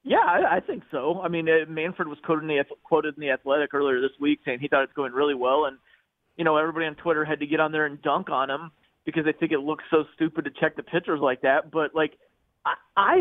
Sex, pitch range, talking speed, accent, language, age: male, 155-200 Hz, 245 wpm, American, English, 30-49